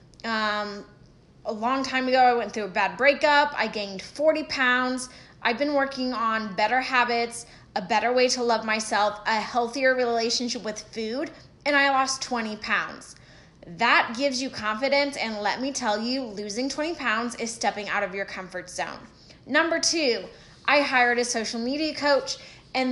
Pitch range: 215-265 Hz